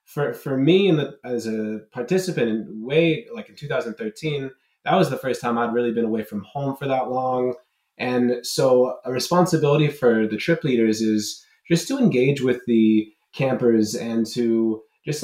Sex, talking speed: male, 175 wpm